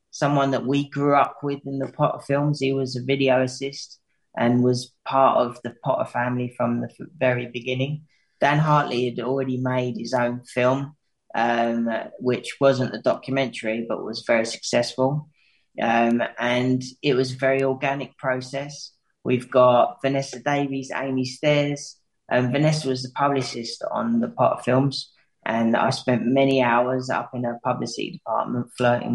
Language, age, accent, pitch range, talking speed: English, 20-39, British, 125-140 Hz, 160 wpm